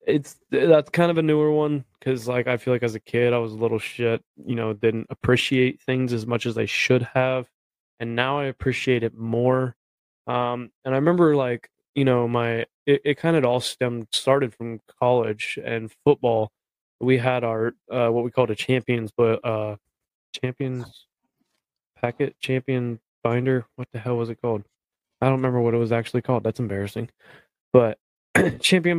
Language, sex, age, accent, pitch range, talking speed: English, male, 20-39, American, 115-135 Hz, 185 wpm